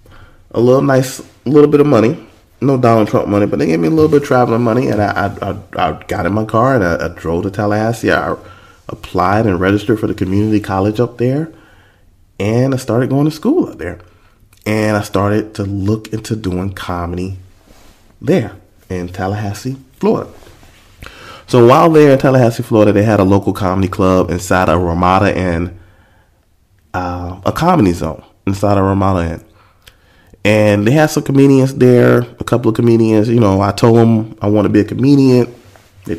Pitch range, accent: 95-115 Hz, American